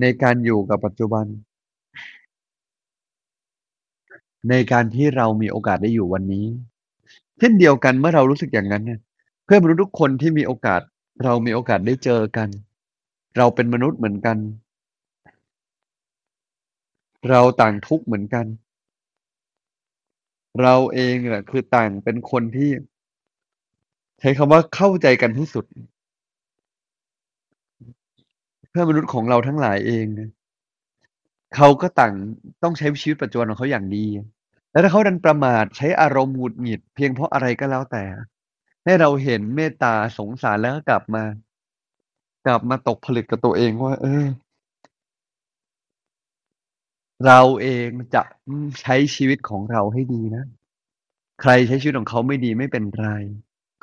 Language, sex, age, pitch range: Thai, male, 20-39, 110-135 Hz